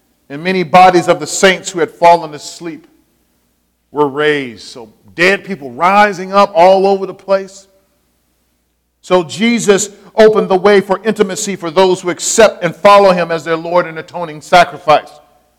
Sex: male